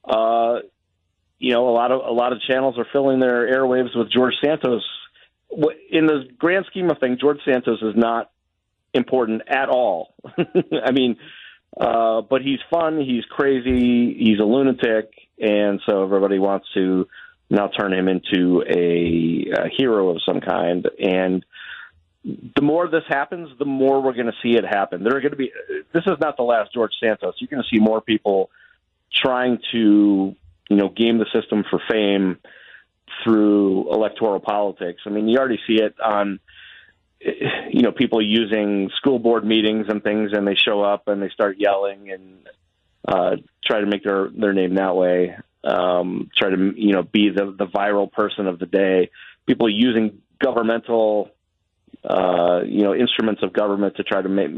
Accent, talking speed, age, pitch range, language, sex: American, 175 wpm, 30-49, 100-125 Hz, English, male